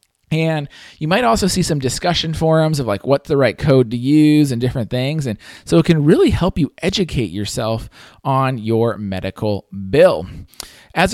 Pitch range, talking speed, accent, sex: 115-155 Hz, 180 wpm, American, male